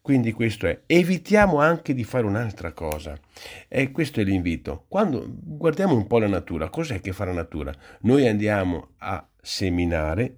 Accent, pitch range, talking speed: native, 95-135 Hz, 160 wpm